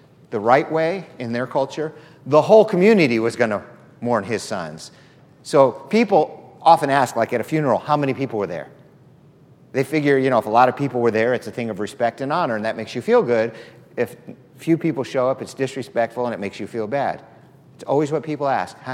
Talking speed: 220 wpm